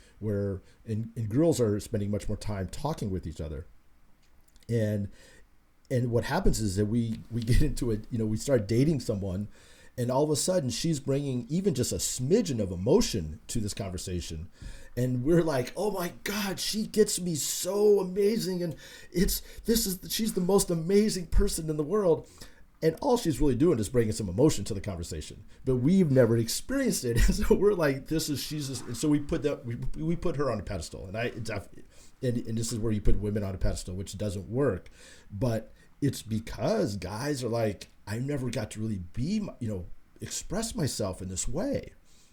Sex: male